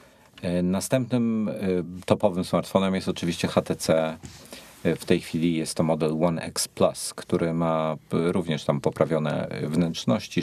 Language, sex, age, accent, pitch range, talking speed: Polish, male, 40-59, native, 80-95 Hz, 120 wpm